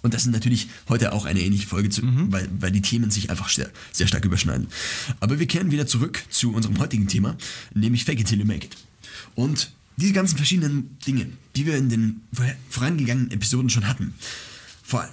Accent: German